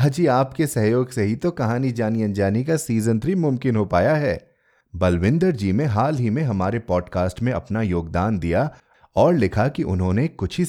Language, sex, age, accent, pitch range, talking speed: Hindi, male, 30-49, native, 95-145 Hz, 190 wpm